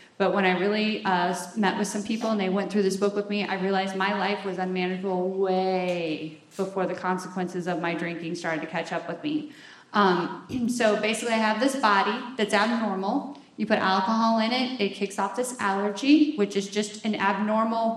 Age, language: 30-49, English